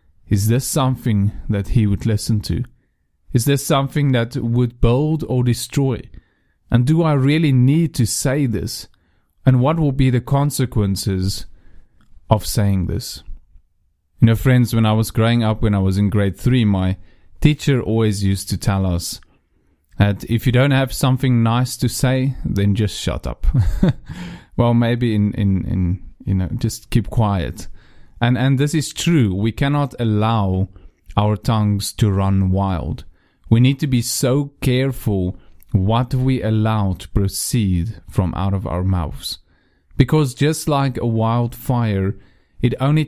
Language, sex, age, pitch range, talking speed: English, male, 30-49, 95-130 Hz, 155 wpm